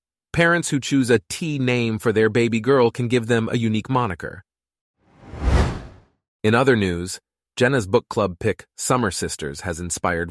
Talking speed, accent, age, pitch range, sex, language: 155 wpm, American, 30-49, 95-120 Hz, male, English